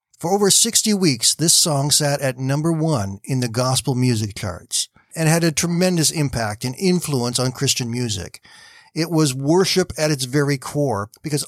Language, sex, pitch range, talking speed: English, male, 130-175 Hz, 170 wpm